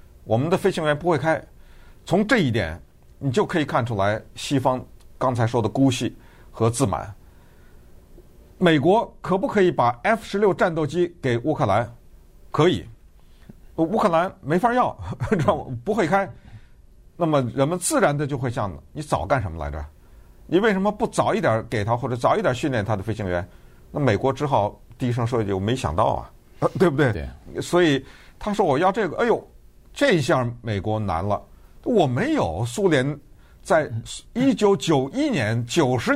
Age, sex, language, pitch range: 50-69, male, Chinese, 110-165 Hz